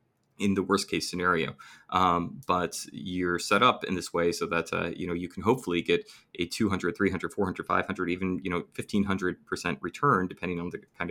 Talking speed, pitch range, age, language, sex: 190 wpm, 85-95 Hz, 20-39, English, male